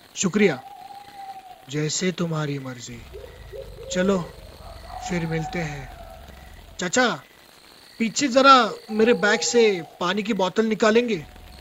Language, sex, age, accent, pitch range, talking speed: Hindi, male, 30-49, native, 155-220 Hz, 95 wpm